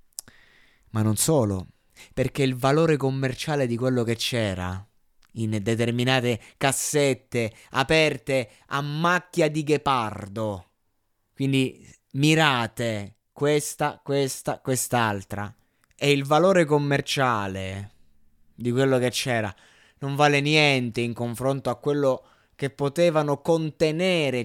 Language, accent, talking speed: Italian, native, 105 wpm